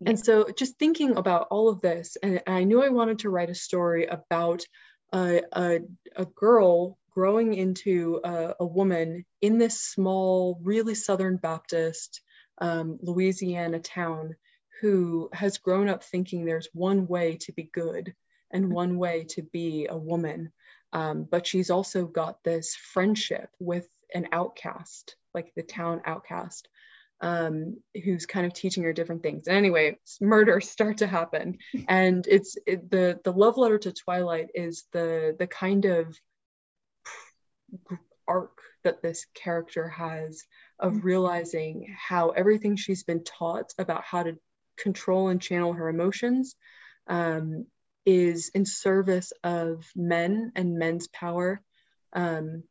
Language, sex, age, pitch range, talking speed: English, female, 20-39, 170-195 Hz, 140 wpm